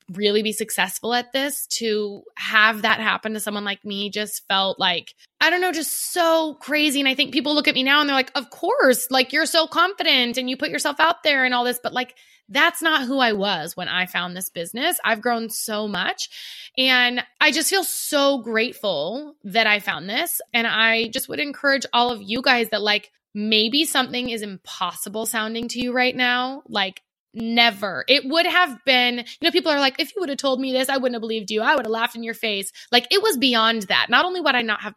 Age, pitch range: 20-39, 210-275 Hz